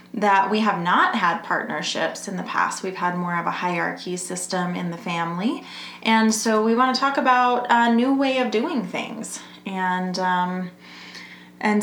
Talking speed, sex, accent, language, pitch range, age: 170 wpm, female, American, English, 180-225 Hz, 20-39